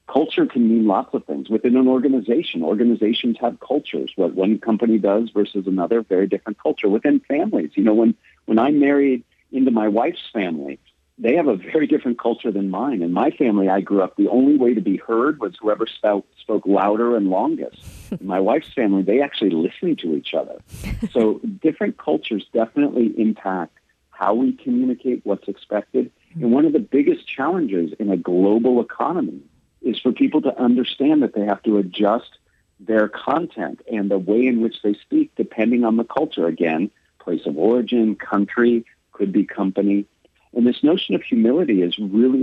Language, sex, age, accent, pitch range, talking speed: English, male, 50-69, American, 100-135 Hz, 180 wpm